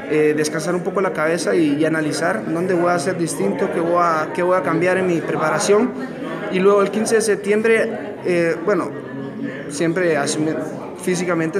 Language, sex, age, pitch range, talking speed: Spanish, male, 30-49, 160-205 Hz, 180 wpm